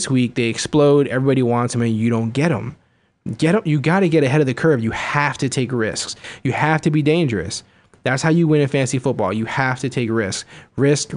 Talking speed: 235 wpm